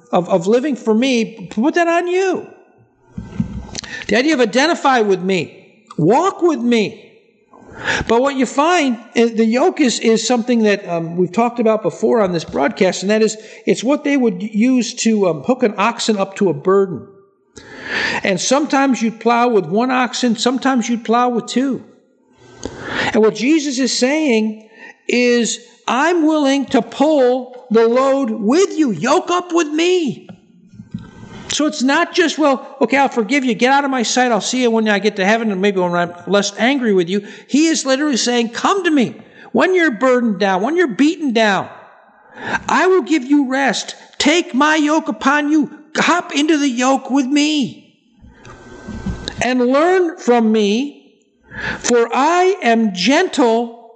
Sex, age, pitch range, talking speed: male, 50-69, 220-290 Hz, 170 wpm